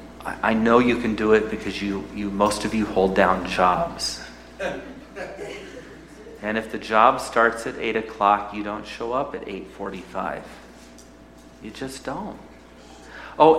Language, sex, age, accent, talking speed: English, male, 40-59, American, 145 wpm